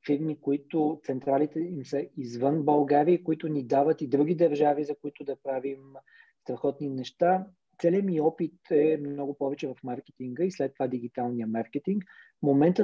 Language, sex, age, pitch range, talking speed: Bulgarian, male, 40-59, 135-160 Hz, 160 wpm